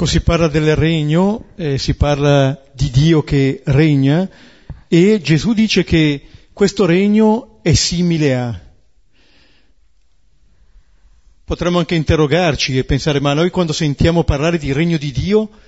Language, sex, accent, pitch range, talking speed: Italian, male, native, 115-175 Hz, 135 wpm